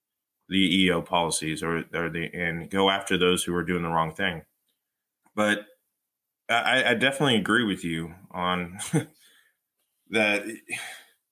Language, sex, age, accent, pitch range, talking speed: English, male, 20-39, American, 85-100 Hz, 135 wpm